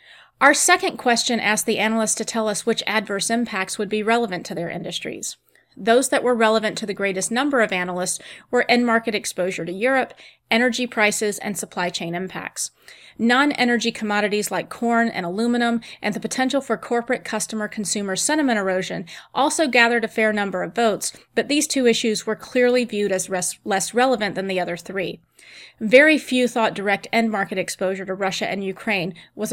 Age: 30-49